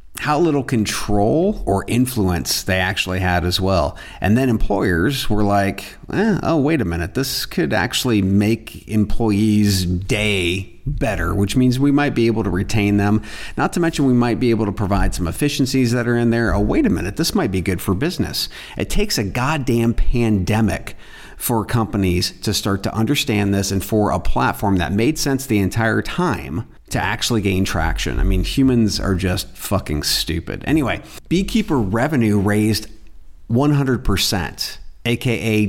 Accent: American